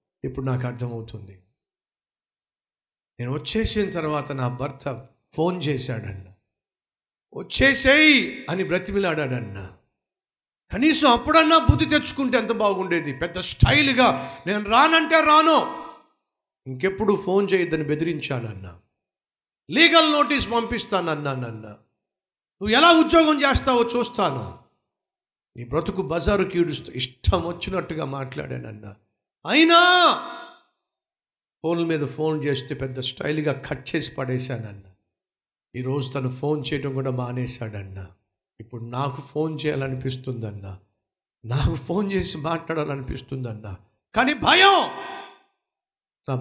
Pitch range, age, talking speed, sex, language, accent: 125-200 Hz, 50-69, 90 wpm, male, Telugu, native